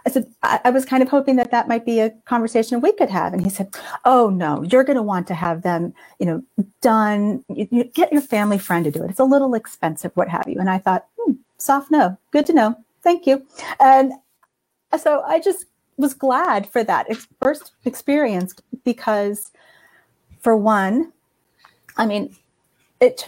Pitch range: 195-255 Hz